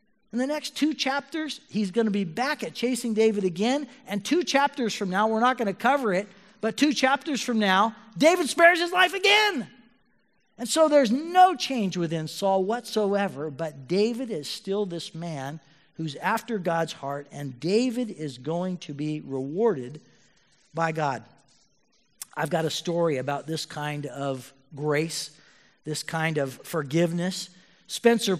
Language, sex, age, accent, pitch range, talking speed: English, male, 50-69, American, 170-235 Hz, 160 wpm